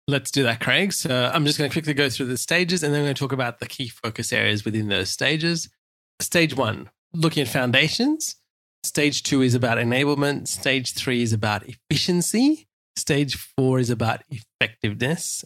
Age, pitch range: 20-39, 115-145 Hz